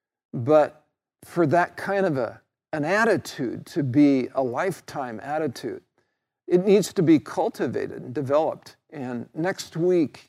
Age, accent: 50-69, American